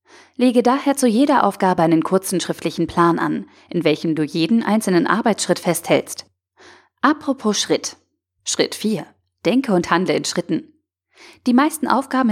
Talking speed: 140 wpm